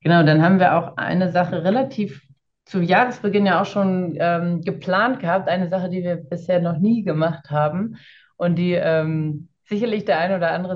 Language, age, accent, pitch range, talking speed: German, 30-49, German, 150-185 Hz, 185 wpm